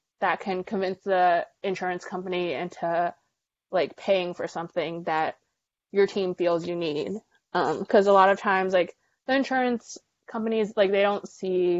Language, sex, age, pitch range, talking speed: English, female, 20-39, 175-200 Hz, 160 wpm